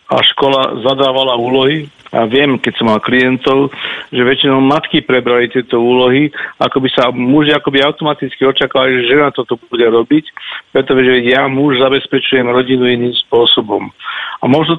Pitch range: 120-135 Hz